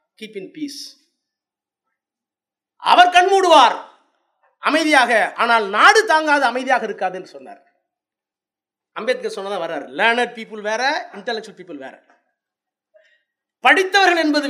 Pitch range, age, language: 240-335 Hz, 30-49, Tamil